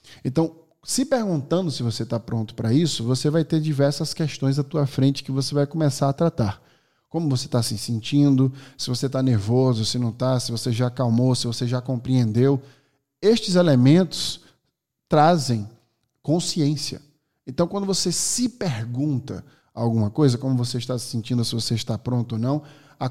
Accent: Brazilian